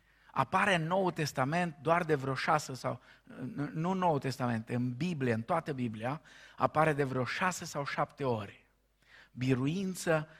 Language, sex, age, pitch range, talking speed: Romanian, male, 50-69, 125-160 Hz, 150 wpm